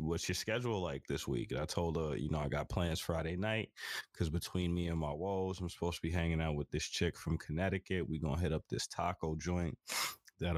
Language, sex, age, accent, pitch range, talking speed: English, male, 20-39, American, 80-90 Hz, 240 wpm